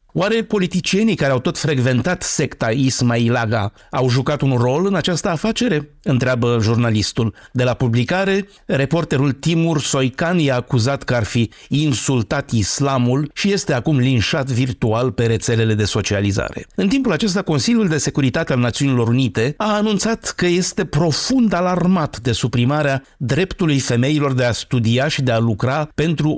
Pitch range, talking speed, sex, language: 120-160 Hz, 150 wpm, male, Romanian